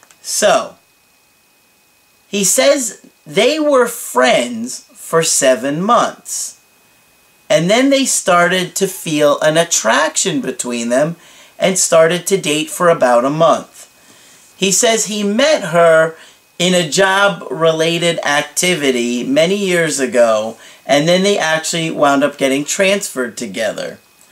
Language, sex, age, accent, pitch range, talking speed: English, male, 40-59, American, 140-205 Hz, 120 wpm